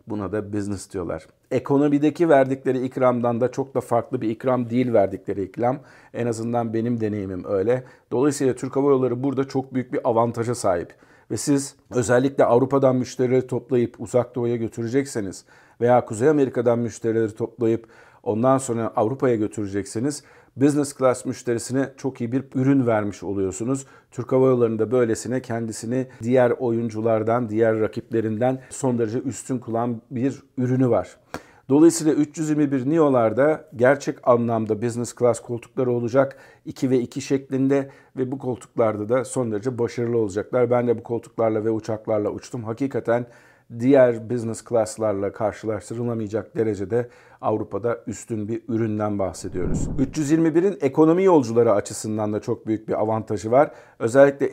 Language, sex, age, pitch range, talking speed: Turkish, male, 50-69, 115-130 Hz, 135 wpm